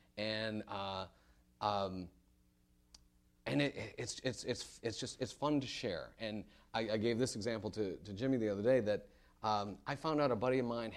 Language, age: English, 30-49